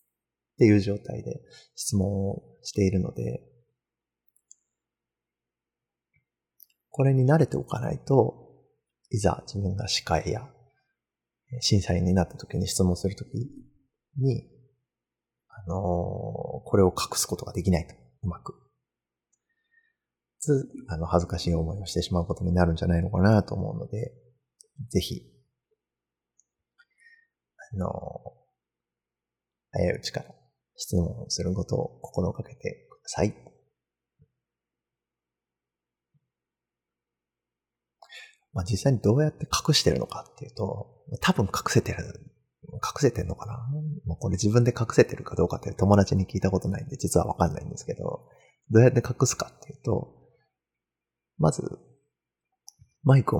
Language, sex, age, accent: Japanese, male, 30-49, native